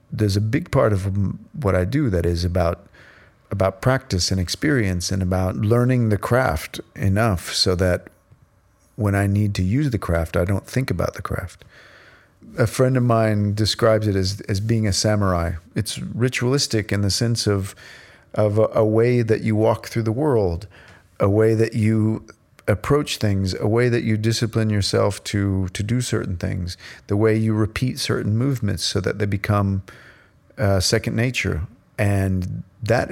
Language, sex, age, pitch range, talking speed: French, male, 40-59, 95-115 Hz, 170 wpm